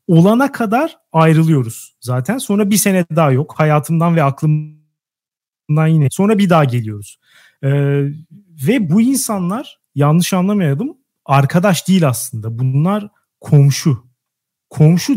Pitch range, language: 140-195 Hz, Turkish